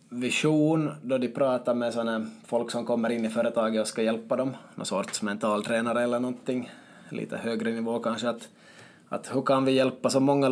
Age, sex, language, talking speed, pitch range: 20-39, male, Swedish, 190 wpm, 115-130 Hz